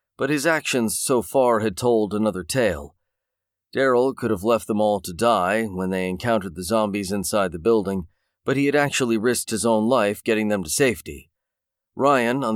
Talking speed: 185 wpm